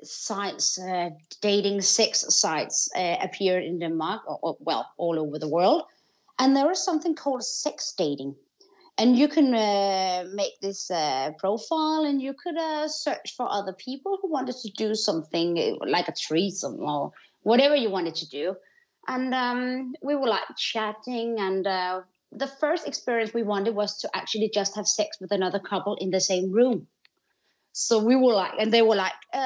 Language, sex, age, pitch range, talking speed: Swedish, female, 30-49, 195-265 Hz, 175 wpm